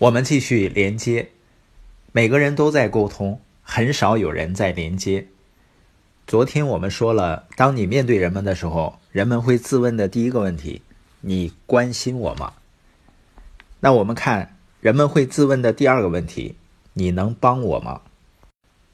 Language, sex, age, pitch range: Chinese, male, 50-69, 95-130 Hz